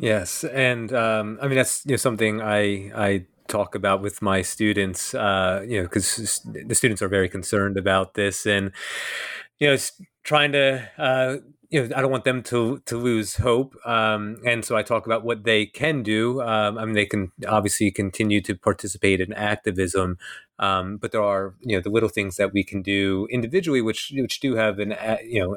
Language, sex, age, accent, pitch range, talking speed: English, male, 30-49, American, 105-130 Hz, 195 wpm